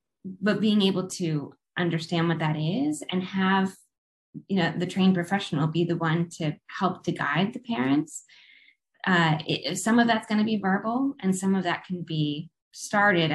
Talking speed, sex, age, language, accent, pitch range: 175 wpm, female, 10-29, English, American, 160-190 Hz